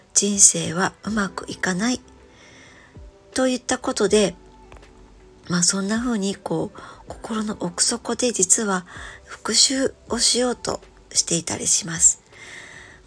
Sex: male